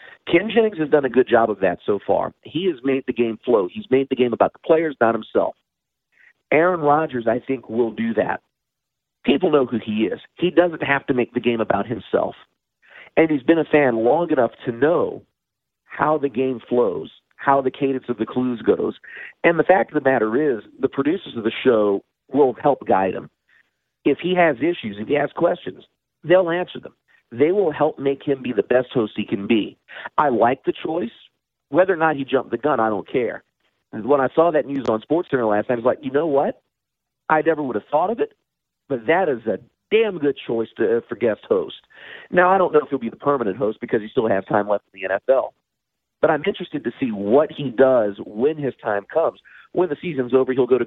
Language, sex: English, male